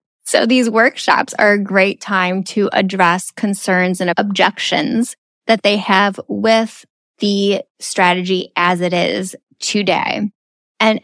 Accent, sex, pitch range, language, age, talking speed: American, female, 185-235 Hz, English, 10-29, 125 wpm